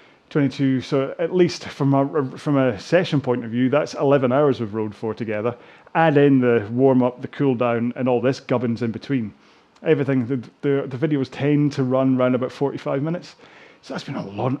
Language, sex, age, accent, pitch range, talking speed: English, male, 30-49, British, 120-145 Hz, 205 wpm